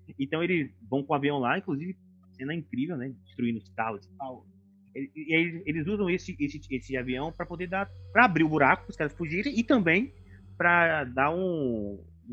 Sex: male